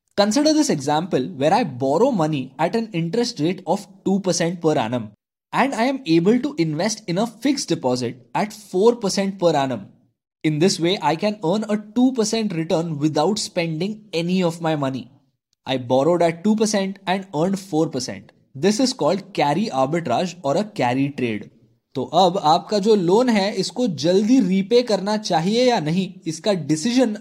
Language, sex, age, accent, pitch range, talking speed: Hindi, male, 20-39, native, 150-210 Hz, 175 wpm